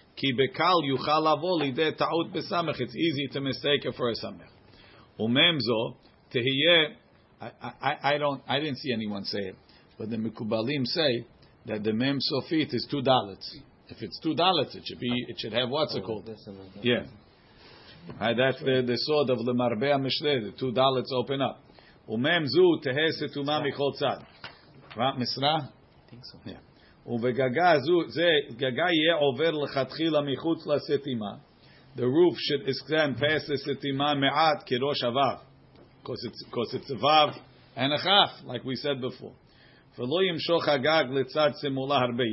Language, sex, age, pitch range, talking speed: English, male, 50-69, 120-150 Hz, 130 wpm